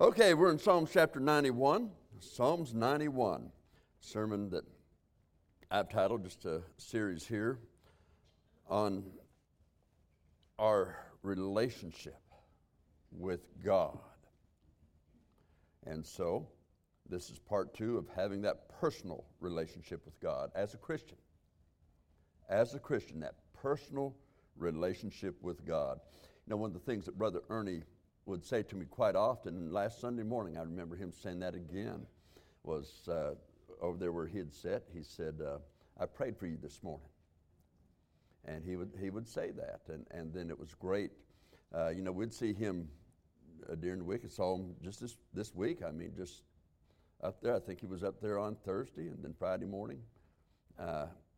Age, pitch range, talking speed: 60-79, 80-105 Hz, 155 wpm